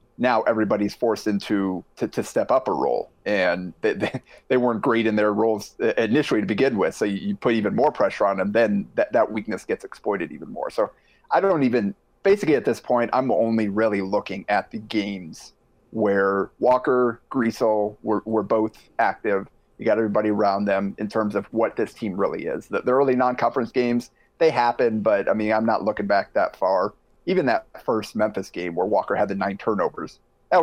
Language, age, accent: English, 30-49, American